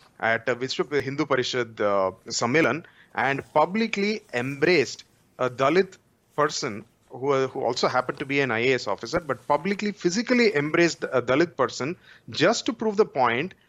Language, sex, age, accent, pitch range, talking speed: English, male, 30-49, Indian, 130-180 Hz, 145 wpm